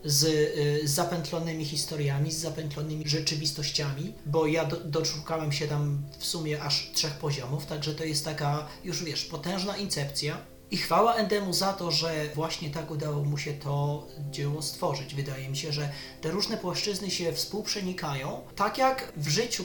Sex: male